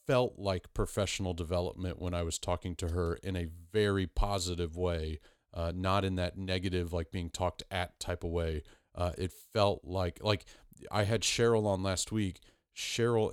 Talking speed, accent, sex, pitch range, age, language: 175 wpm, American, male, 90-100 Hz, 40-59, English